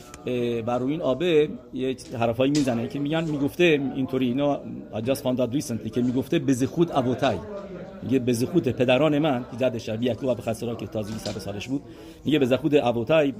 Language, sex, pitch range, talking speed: English, male, 125-165 Hz, 170 wpm